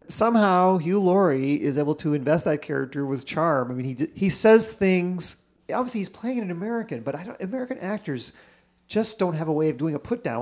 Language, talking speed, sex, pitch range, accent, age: English, 215 wpm, male, 140-195 Hz, American, 40-59